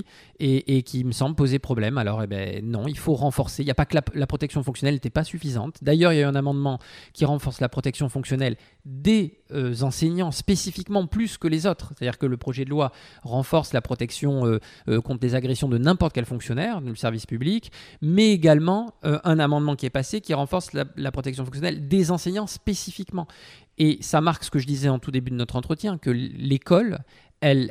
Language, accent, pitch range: French, French, 125-160 Hz